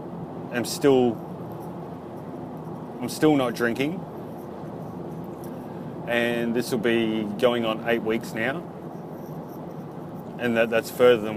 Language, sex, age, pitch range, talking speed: English, male, 30-49, 110-140 Hz, 105 wpm